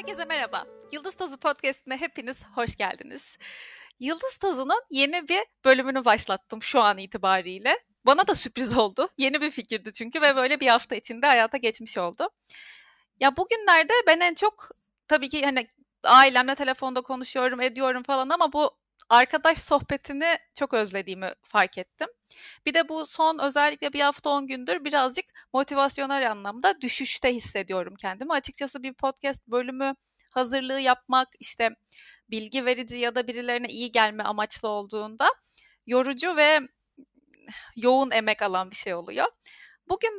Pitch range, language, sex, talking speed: 240-320 Hz, Turkish, female, 140 wpm